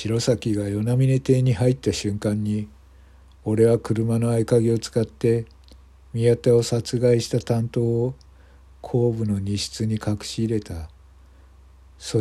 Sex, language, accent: male, Japanese, native